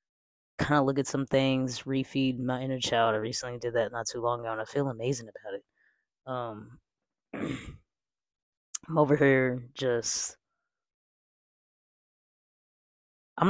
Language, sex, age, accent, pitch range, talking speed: English, female, 20-39, American, 125-140 Hz, 135 wpm